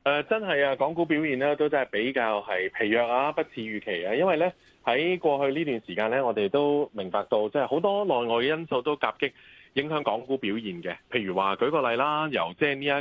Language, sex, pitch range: Chinese, male, 110-160 Hz